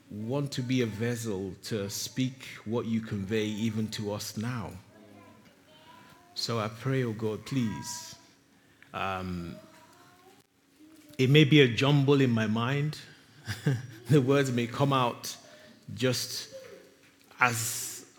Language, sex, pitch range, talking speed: English, male, 100-125 Hz, 120 wpm